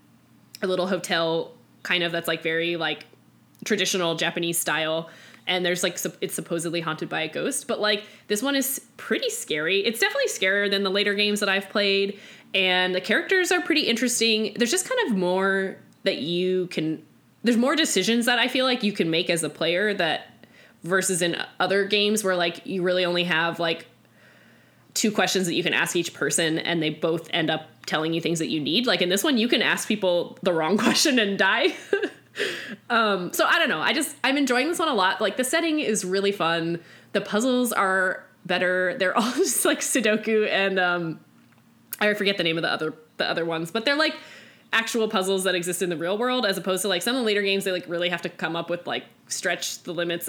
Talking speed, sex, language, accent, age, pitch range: 215 wpm, female, English, American, 10-29, 170-220 Hz